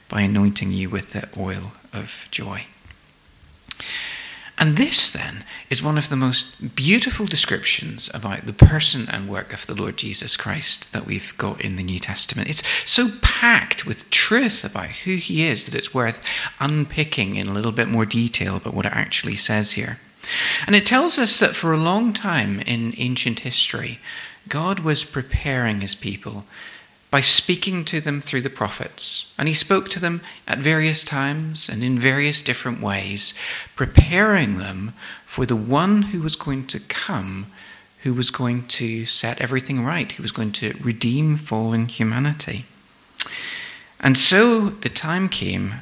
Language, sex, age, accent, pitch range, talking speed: English, male, 40-59, British, 105-155 Hz, 165 wpm